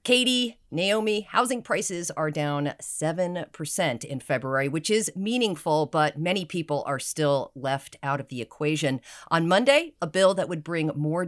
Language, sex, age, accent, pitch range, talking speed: English, female, 40-59, American, 140-175 Hz, 160 wpm